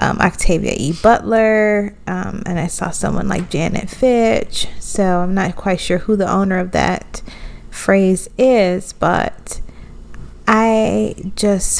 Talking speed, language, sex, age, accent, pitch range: 135 wpm, English, female, 20-39, American, 185-210 Hz